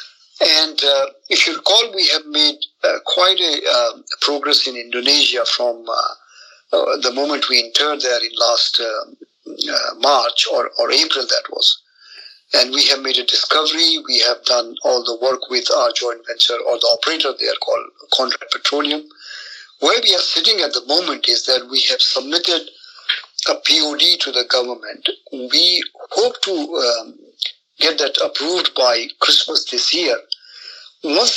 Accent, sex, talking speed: Indian, male, 165 wpm